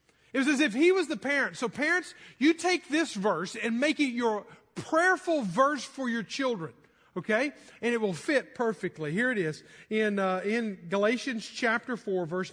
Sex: male